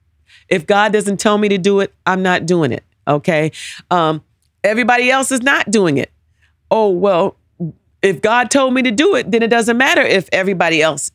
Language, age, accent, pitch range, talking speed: English, 40-59, American, 180-235 Hz, 195 wpm